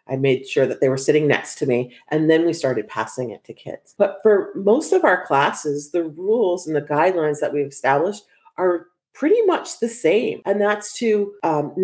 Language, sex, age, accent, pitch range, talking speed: English, female, 40-59, American, 140-180 Hz, 210 wpm